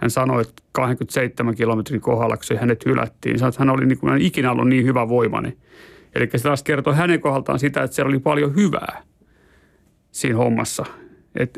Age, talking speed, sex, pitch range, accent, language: 30-49, 175 wpm, male, 130-150 Hz, native, Finnish